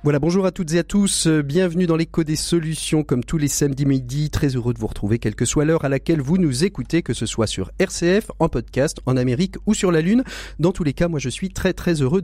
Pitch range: 130-180 Hz